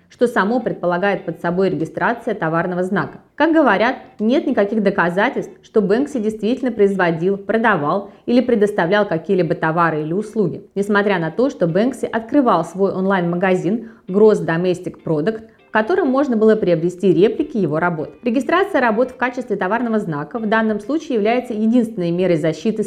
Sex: female